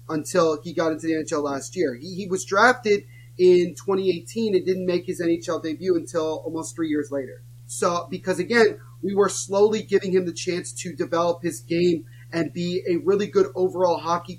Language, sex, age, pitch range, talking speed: English, male, 30-49, 155-195 Hz, 190 wpm